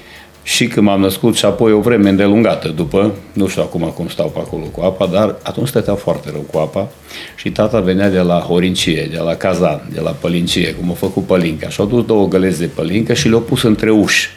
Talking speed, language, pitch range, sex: 215 wpm, Romanian, 95-125 Hz, male